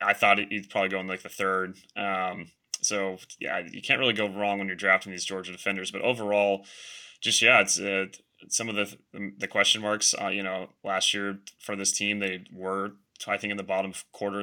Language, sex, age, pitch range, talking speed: English, male, 20-39, 95-100 Hz, 215 wpm